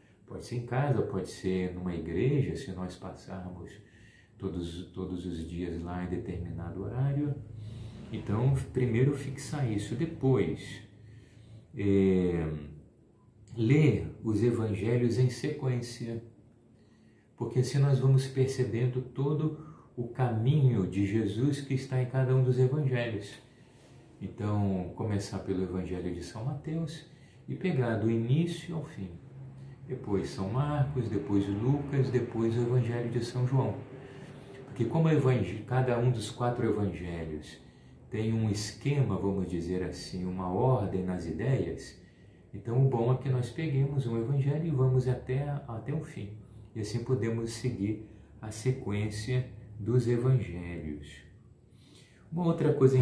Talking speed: 130 wpm